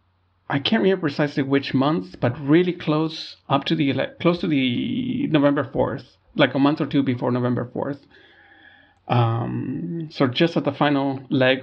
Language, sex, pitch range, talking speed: English, male, 130-170 Hz, 170 wpm